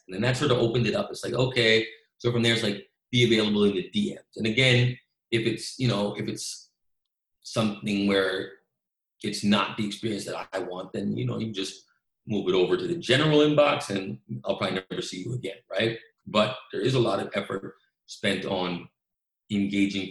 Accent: American